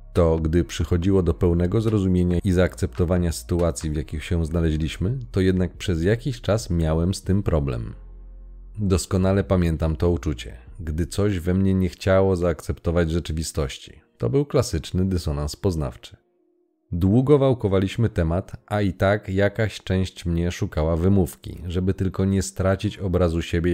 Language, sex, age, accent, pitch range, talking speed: Polish, male, 40-59, native, 85-100 Hz, 140 wpm